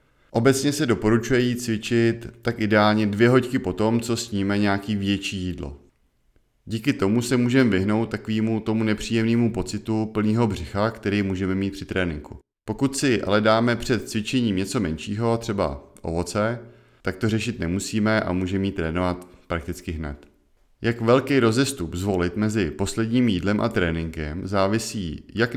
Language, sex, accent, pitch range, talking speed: Czech, male, native, 95-115 Hz, 145 wpm